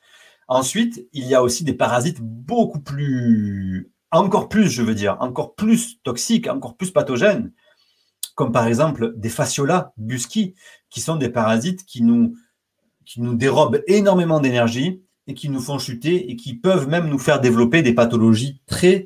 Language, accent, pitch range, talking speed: French, French, 120-190 Hz, 165 wpm